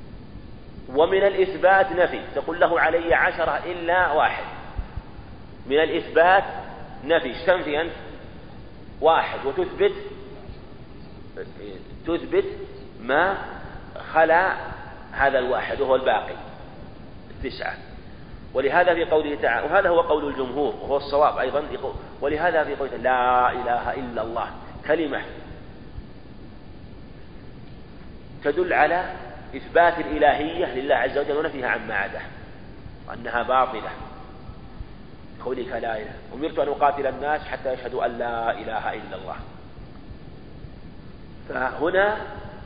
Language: Arabic